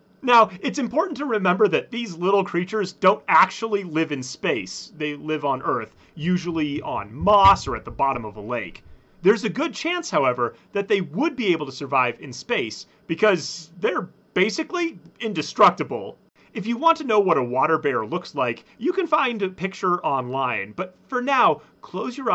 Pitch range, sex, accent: 160-250 Hz, male, American